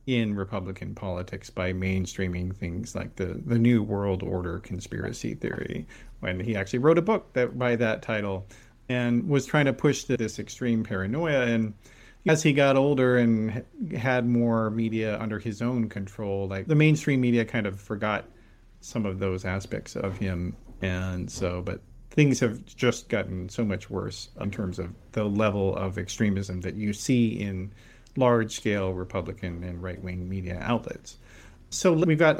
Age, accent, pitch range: 40-59, American, 100-125 Hz